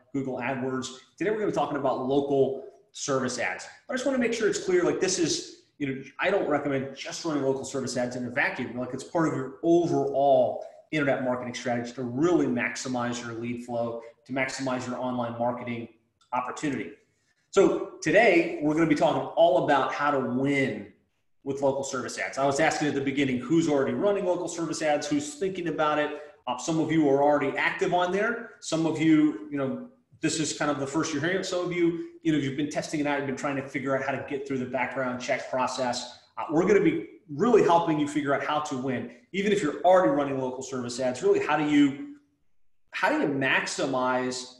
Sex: male